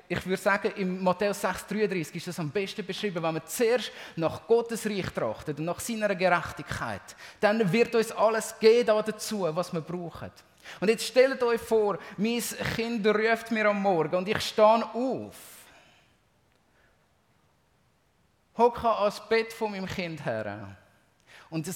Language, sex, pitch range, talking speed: German, male, 165-215 Hz, 150 wpm